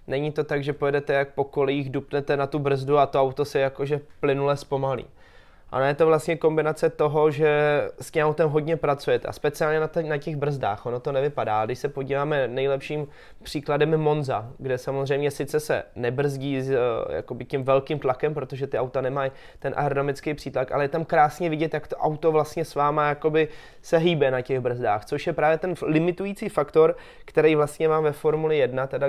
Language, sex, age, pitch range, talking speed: Czech, male, 20-39, 135-155 Hz, 190 wpm